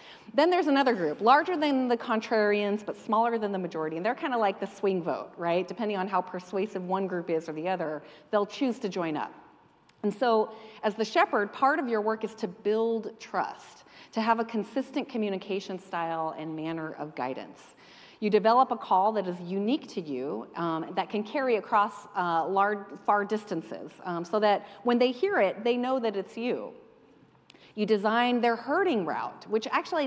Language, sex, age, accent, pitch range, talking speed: English, female, 40-59, American, 185-230 Hz, 195 wpm